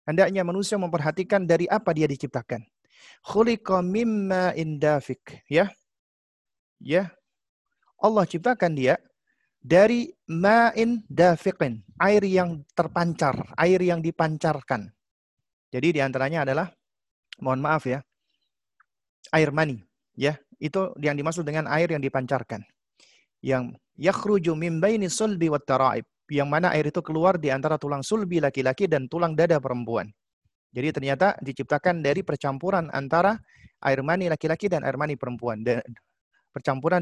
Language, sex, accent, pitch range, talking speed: Indonesian, male, native, 135-190 Hz, 125 wpm